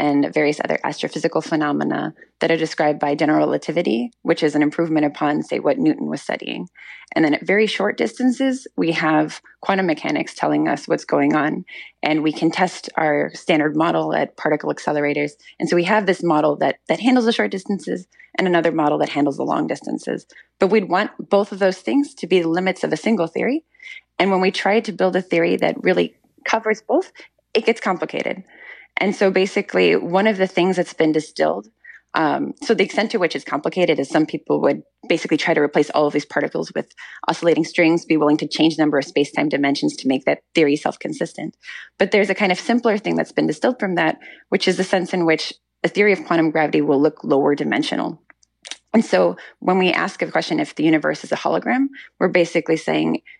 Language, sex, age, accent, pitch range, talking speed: English, female, 20-39, American, 155-215 Hz, 205 wpm